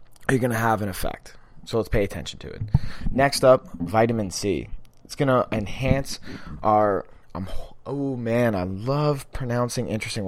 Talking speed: 145 wpm